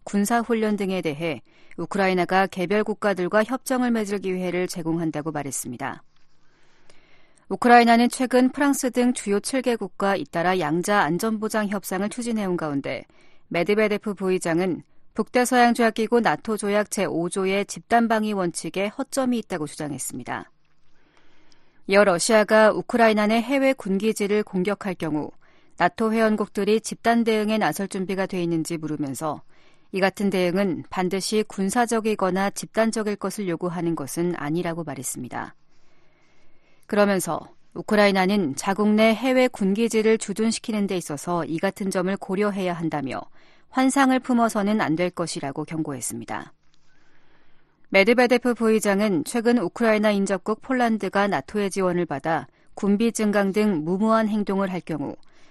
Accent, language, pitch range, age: native, Korean, 175-220 Hz, 40-59